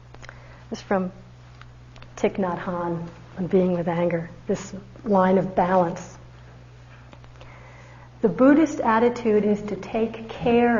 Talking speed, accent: 115 wpm, American